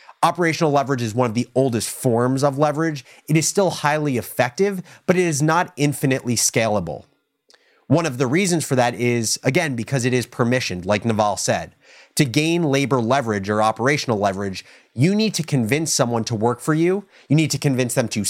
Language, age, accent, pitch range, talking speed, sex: English, 30-49, American, 120-160 Hz, 190 wpm, male